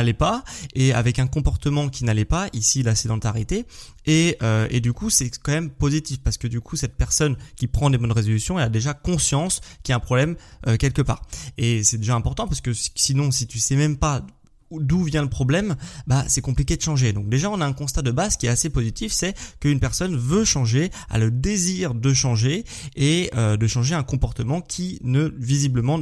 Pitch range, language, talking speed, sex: 120-155 Hz, French, 220 wpm, male